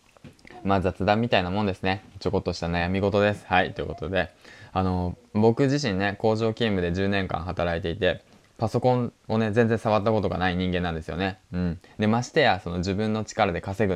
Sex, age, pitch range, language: male, 20-39, 85-110 Hz, Japanese